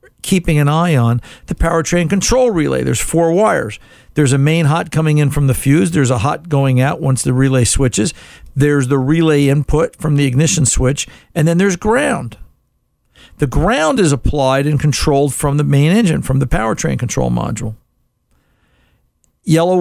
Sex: male